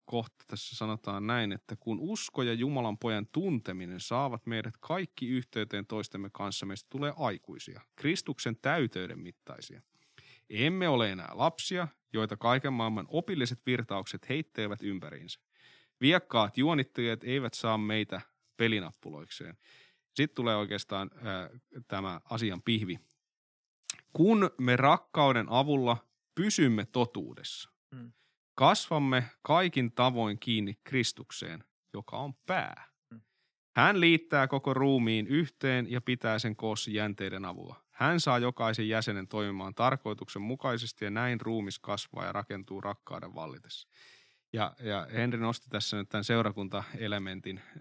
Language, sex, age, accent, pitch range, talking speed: Finnish, male, 30-49, native, 105-130 Hz, 120 wpm